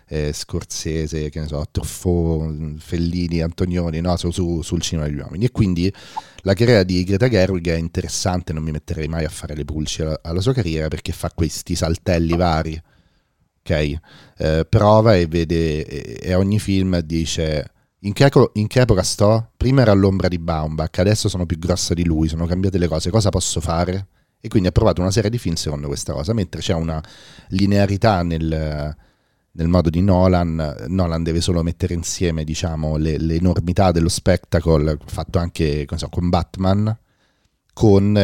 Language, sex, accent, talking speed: Italian, male, native, 175 wpm